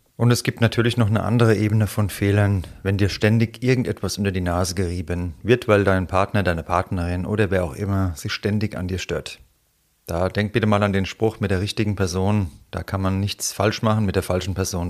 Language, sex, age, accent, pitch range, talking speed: German, male, 30-49, German, 95-110 Hz, 220 wpm